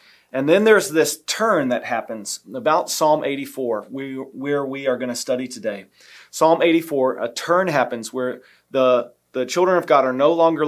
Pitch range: 125-145 Hz